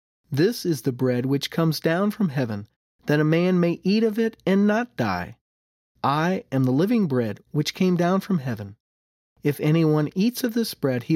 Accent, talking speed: American, 195 wpm